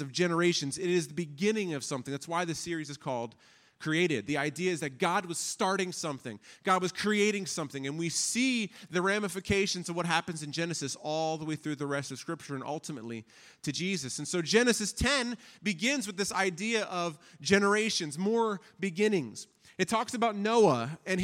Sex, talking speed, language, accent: male, 185 wpm, English, American